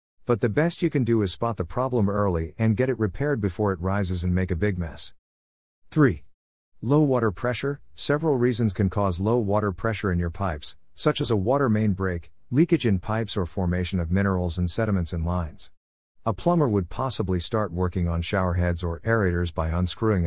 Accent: American